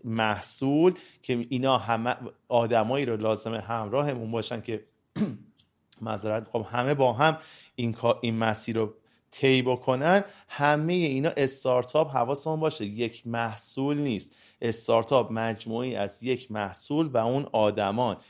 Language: Persian